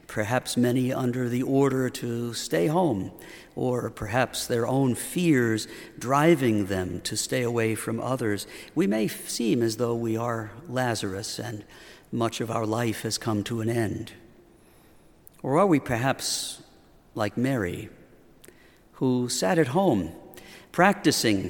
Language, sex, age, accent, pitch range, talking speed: English, male, 50-69, American, 115-145 Hz, 135 wpm